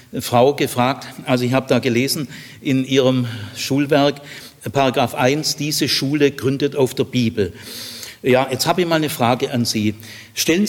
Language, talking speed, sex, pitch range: German, 155 wpm, male, 115-150 Hz